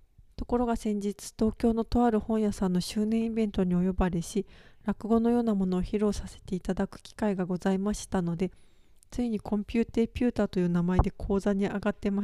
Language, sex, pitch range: Japanese, female, 195-225 Hz